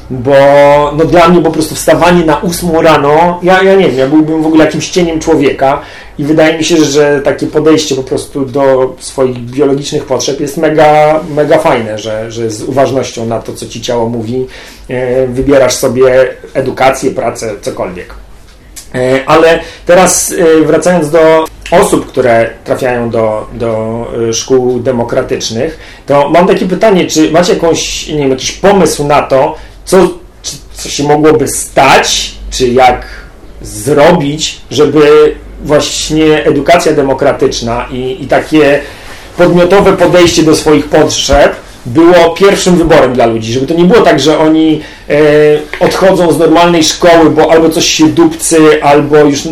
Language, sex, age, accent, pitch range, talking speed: Polish, male, 40-59, native, 130-165 Hz, 145 wpm